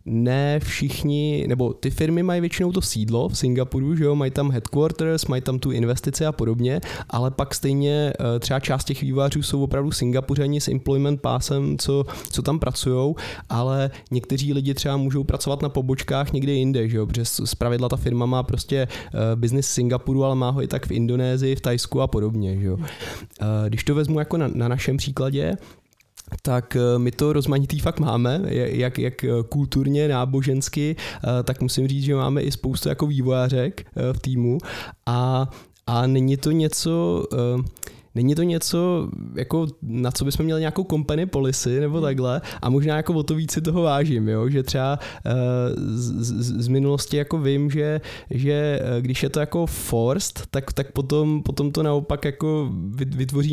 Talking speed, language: 170 wpm, Czech